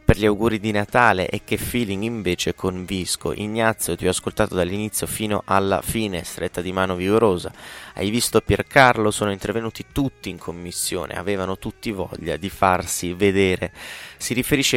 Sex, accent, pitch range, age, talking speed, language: male, native, 95-110 Hz, 20-39, 155 wpm, Italian